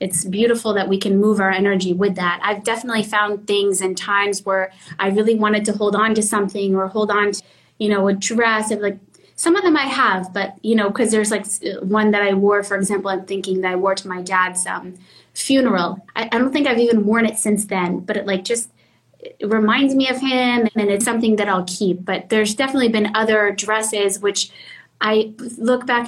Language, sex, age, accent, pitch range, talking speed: English, female, 20-39, American, 195-225 Hz, 225 wpm